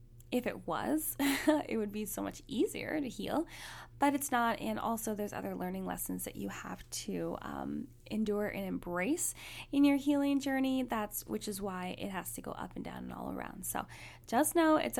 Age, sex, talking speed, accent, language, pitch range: 10-29, female, 200 wpm, American, English, 210-280 Hz